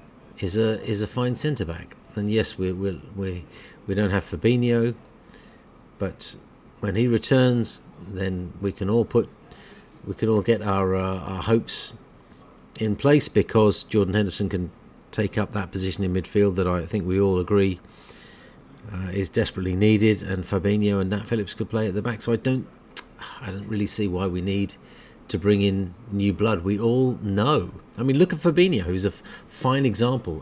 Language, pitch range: English, 90-110 Hz